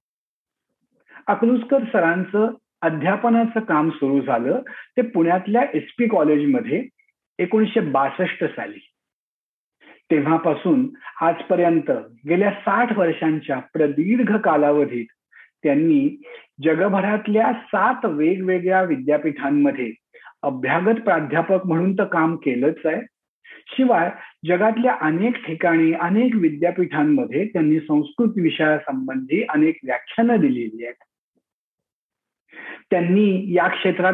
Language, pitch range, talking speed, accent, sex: Marathi, 155-220 Hz, 65 wpm, native, male